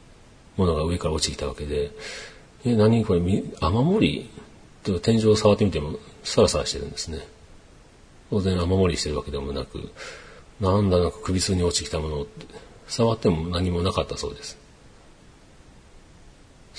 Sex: male